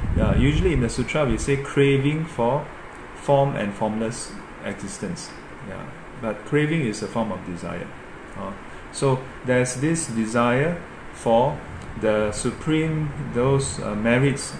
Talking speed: 130 wpm